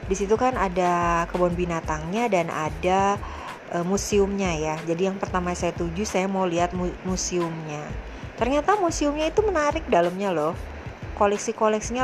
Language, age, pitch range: Indonesian, 20-39, 175-235 Hz